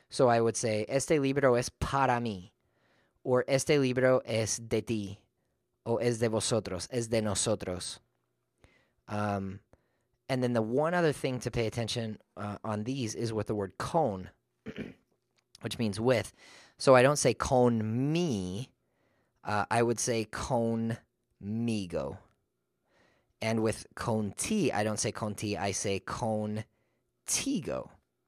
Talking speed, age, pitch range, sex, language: 140 wpm, 20-39, 105-125 Hz, male, English